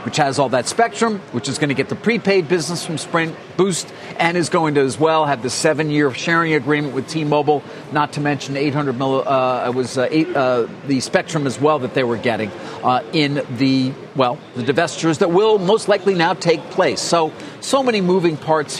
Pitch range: 135-180 Hz